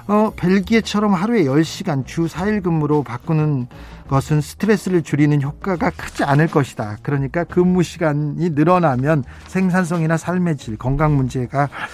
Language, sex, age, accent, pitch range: Korean, male, 40-59, native, 135-195 Hz